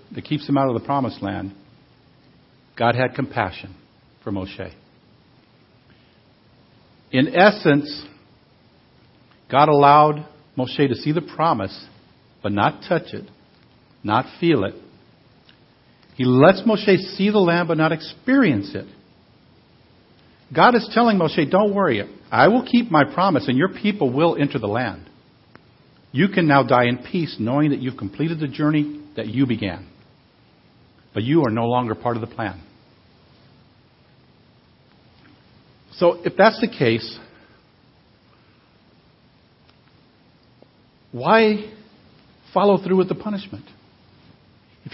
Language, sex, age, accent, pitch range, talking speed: English, male, 50-69, American, 120-190 Hz, 125 wpm